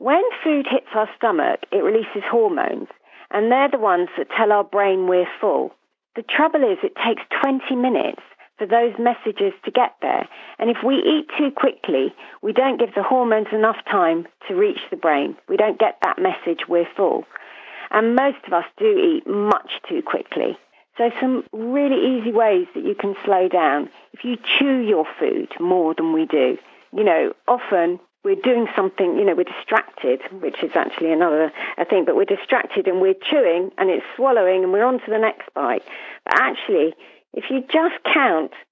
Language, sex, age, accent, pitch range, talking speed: English, female, 40-59, British, 200-295 Hz, 185 wpm